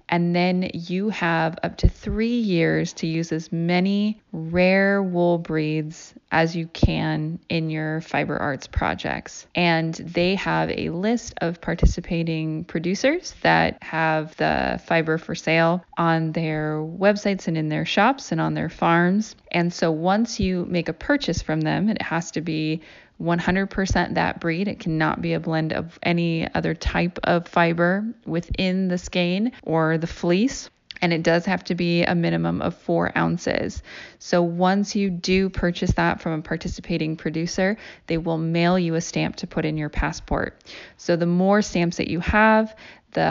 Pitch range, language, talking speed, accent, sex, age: 160-185 Hz, English, 170 wpm, American, female, 20-39